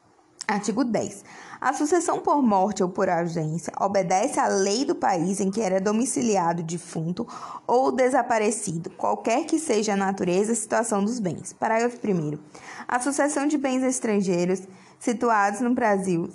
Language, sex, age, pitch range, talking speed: Portuguese, female, 20-39, 195-245 Hz, 150 wpm